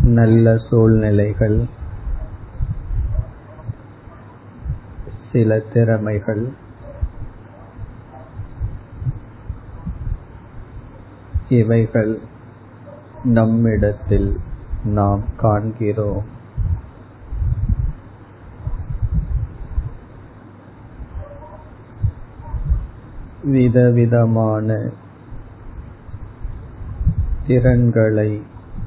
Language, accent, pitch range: Tamil, native, 95-115 Hz